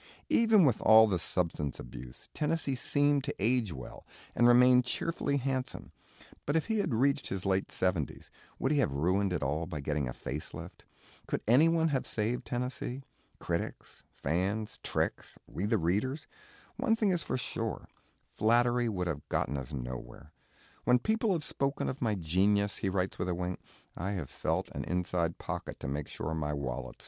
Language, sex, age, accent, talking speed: English, male, 50-69, American, 175 wpm